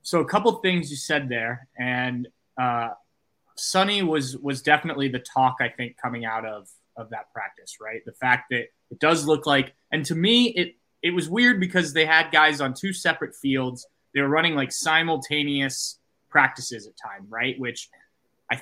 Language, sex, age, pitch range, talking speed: English, male, 20-39, 130-175 Hz, 190 wpm